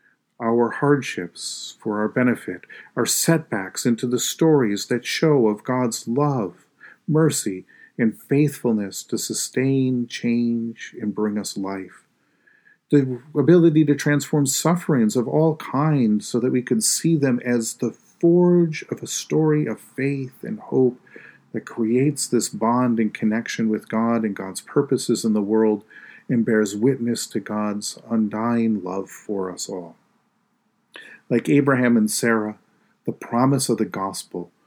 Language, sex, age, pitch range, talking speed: English, male, 40-59, 110-135 Hz, 140 wpm